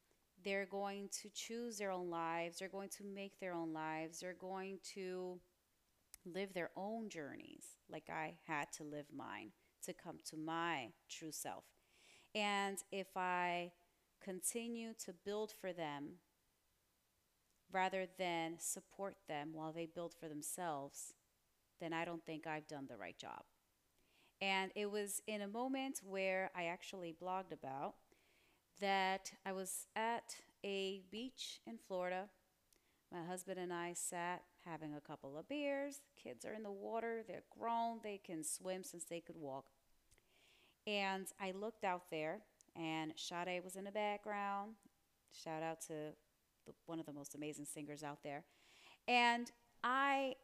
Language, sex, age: English, female, 30-49